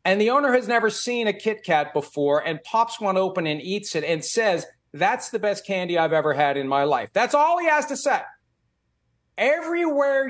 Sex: male